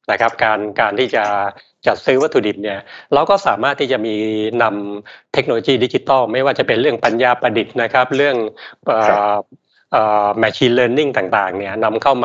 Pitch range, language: 100-120 Hz, Thai